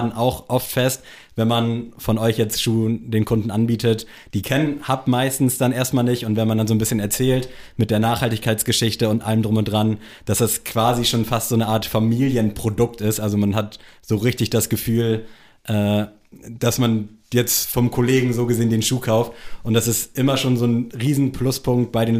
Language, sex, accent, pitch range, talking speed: German, male, German, 110-120 Hz, 195 wpm